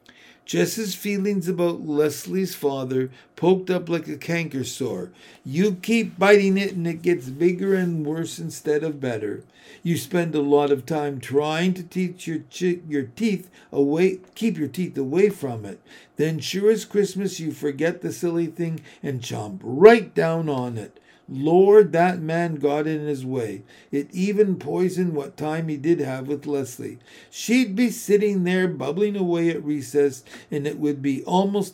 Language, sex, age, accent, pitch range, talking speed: English, male, 50-69, American, 145-185 Hz, 170 wpm